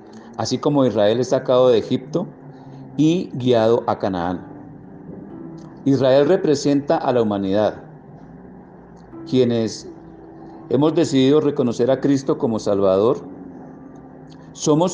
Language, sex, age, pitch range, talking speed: Spanish, male, 50-69, 105-140 Hz, 100 wpm